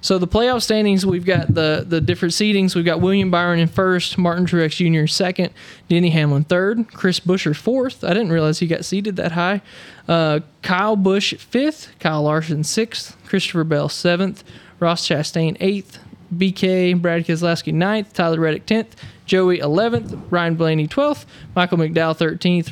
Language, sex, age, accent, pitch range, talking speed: English, male, 20-39, American, 155-185 Hz, 165 wpm